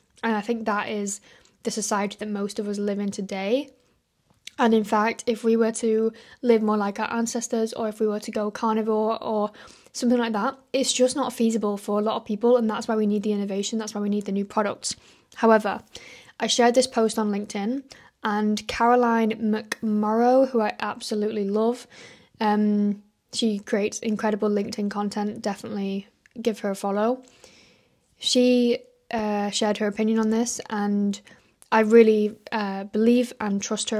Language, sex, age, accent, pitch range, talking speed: English, female, 10-29, British, 210-235 Hz, 175 wpm